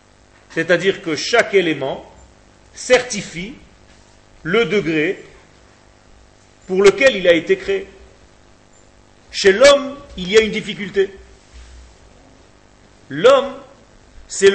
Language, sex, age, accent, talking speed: French, male, 40-59, French, 90 wpm